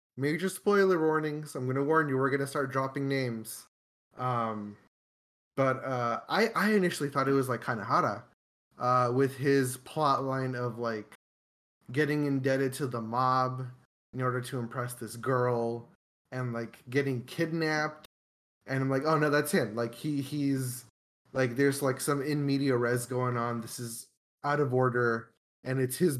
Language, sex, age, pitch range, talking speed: English, male, 20-39, 120-145 Hz, 165 wpm